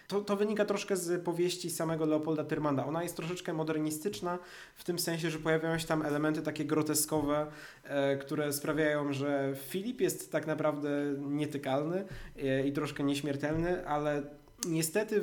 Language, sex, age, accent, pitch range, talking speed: Polish, male, 20-39, native, 140-170 Hz, 145 wpm